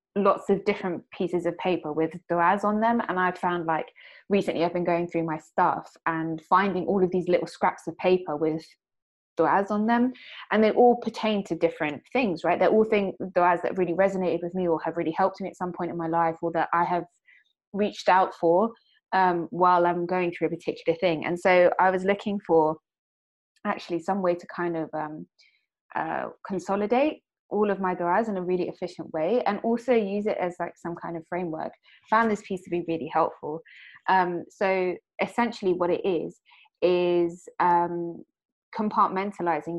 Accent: British